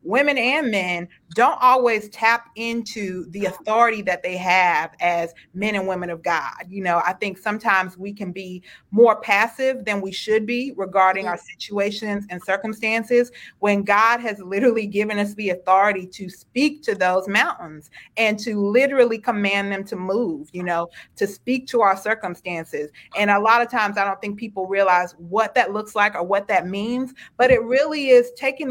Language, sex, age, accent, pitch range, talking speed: English, female, 30-49, American, 180-225 Hz, 180 wpm